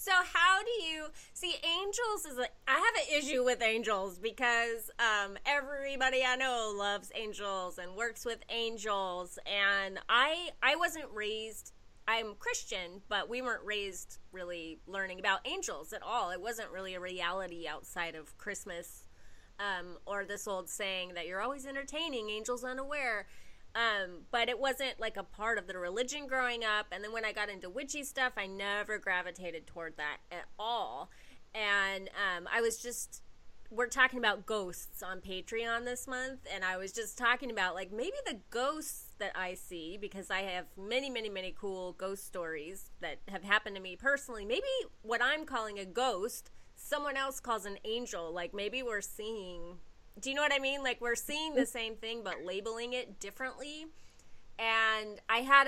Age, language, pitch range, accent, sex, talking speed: 20-39, English, 195-260 Hz, American, female, 175 wpm